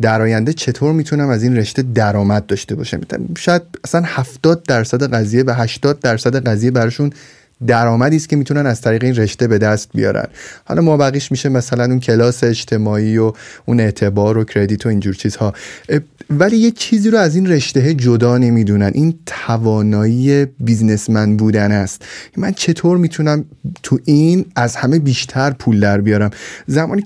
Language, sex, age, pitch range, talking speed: Persian, male, 30-49, 110-145 Hz, 160 wpm